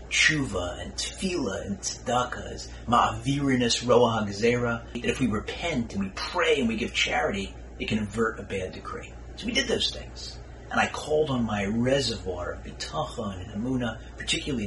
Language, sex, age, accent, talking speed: English, male, 30-49, American, 170 wpm